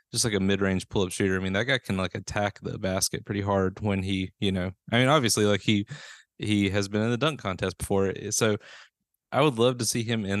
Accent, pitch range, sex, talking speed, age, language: American, 100-115 Hz, male, 255 wpm, 20-39, English